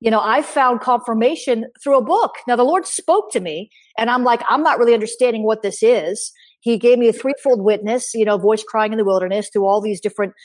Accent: American